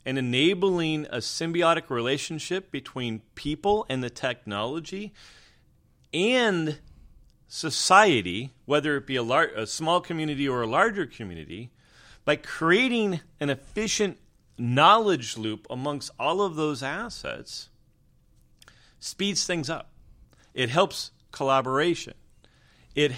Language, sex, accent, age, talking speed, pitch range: English, male, American, 40-59, 110 wpm, 115-155 Hz